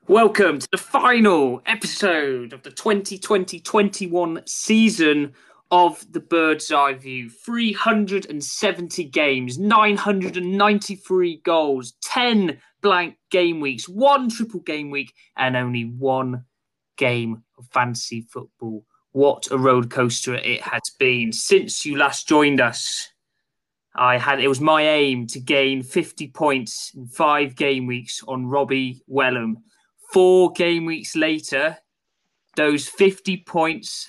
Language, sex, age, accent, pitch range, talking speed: English, male, 20-39, British, 130-185 Hz, 120 wpm